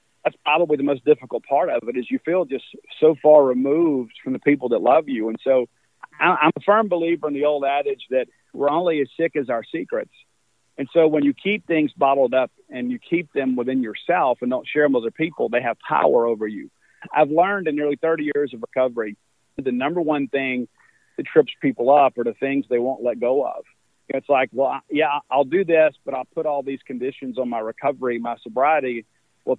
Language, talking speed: English, 220 wpm